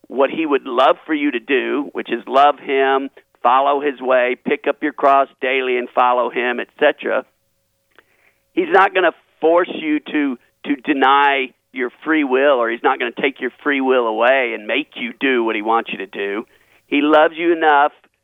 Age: 50-69